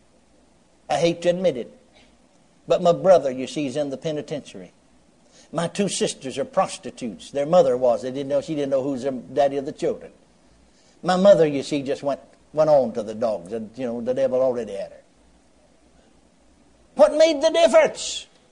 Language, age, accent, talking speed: English, 60-79, American, 185 wpm